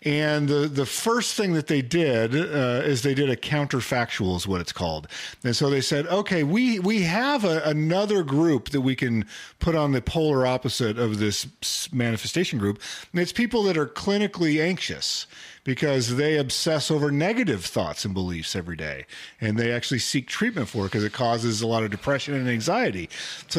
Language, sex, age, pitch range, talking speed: English, male, 40-59, 125-190 Hz, 190 wpm